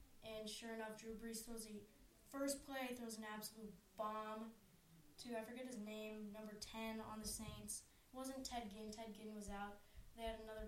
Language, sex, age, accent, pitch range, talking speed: English, female, 10-29, American, 195-220 Hz, 190 wpm